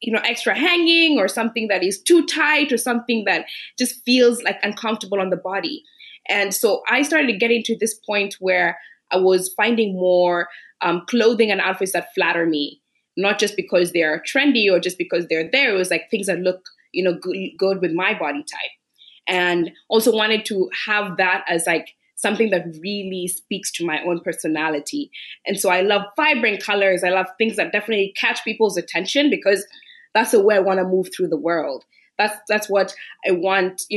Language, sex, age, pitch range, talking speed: English, female, 20-39, 185-235 Hz, 200 wpm